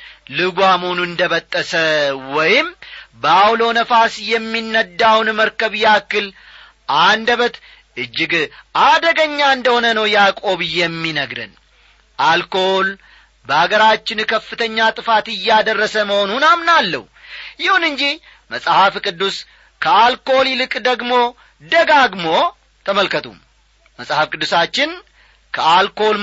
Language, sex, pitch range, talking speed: Amharic, male, 165-235 Hz, 80 wpm